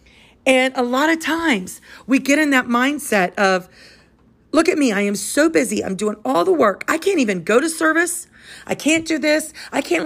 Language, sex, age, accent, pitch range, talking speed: English, female, 40-59, American, 190-280 Hz, 210 wpm